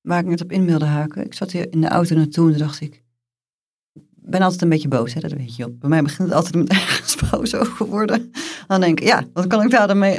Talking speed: 270 wpm